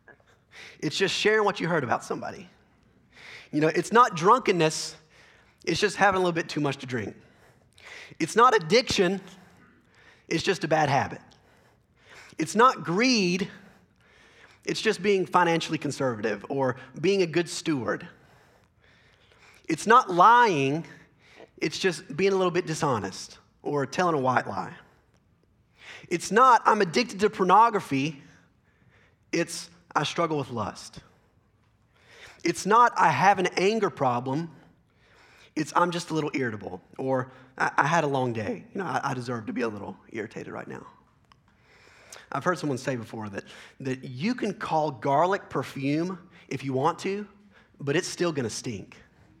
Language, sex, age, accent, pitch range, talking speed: English, male, 30-49, American, 135-195 Hz, 150 wpm